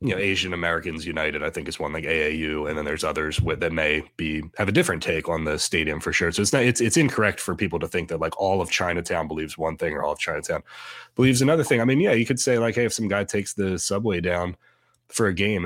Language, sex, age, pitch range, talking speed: English, male, 20-39, 85-110 Hz, 270 wpm